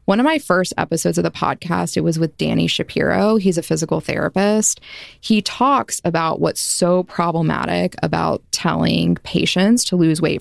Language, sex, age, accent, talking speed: English, female, 20-39, American, 165 wpm